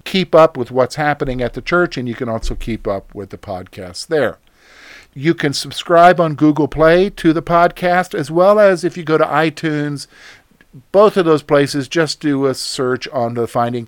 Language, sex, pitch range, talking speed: English, male, 120-165 Hz, 200 wpm